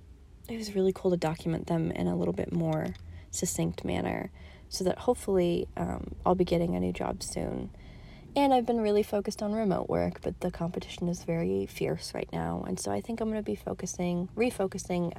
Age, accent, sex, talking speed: 30-49, American, female, 200 wpm